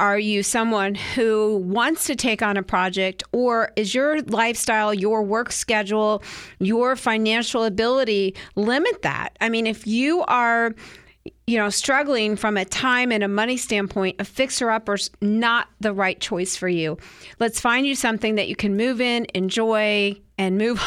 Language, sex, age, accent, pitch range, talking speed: English, female, 40-59, American, 200-245 Hz, 165 wpm